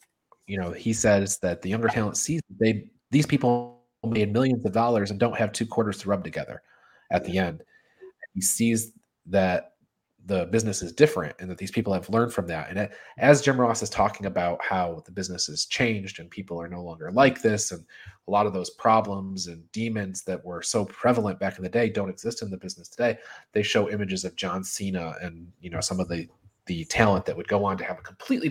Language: English